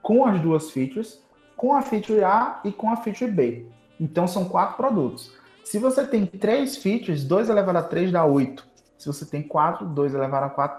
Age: 20-39